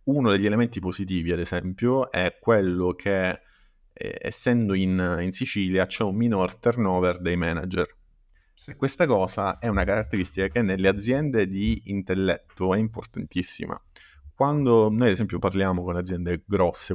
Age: 30-49